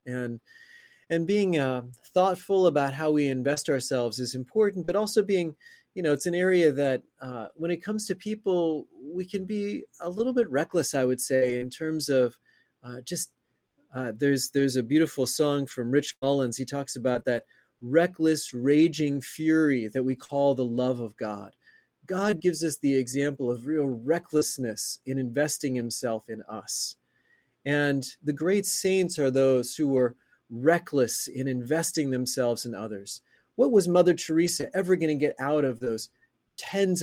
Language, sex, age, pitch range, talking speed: English, male, 30-49, 130-170 Hz, 170 wpm